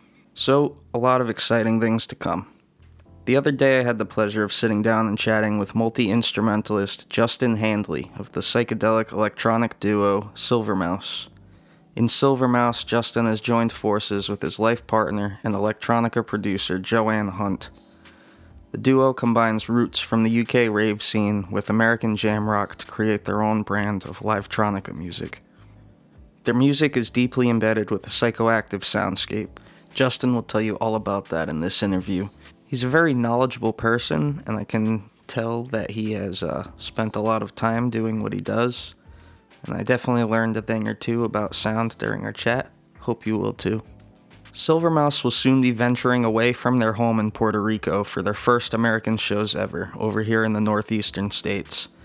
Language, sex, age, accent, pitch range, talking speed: English, male, 20-39, American, 105-120 Hz, 170 wpm